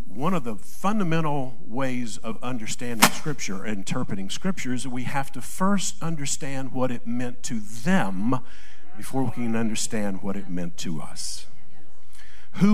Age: 50-69